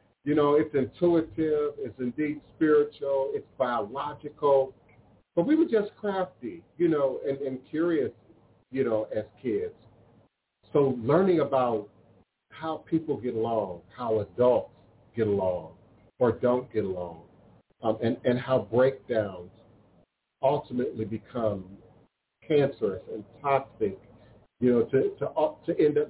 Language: English